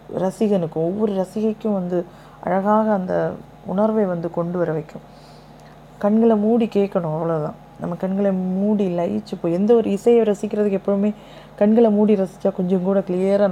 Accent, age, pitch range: native, 20-39, 170-215 Hz